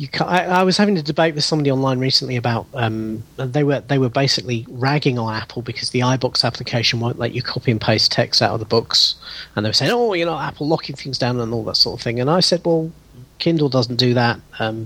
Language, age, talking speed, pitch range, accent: English, 40-59, 240 wpm, 115-145 Hz, British